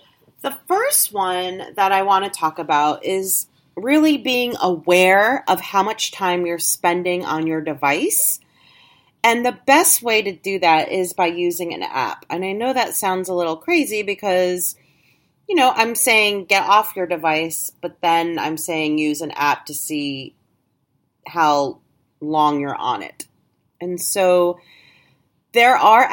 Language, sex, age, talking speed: English, female, 30-49, 160 wpm